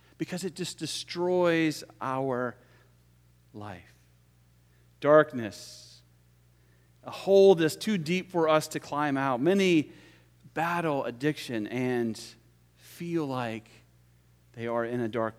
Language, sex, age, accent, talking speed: English, male, 40-59, American, 110 wpm